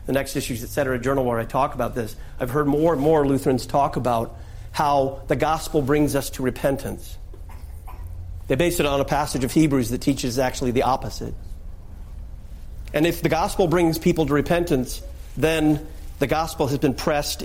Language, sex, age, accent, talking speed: English, male, 50-69, American, 180 wpm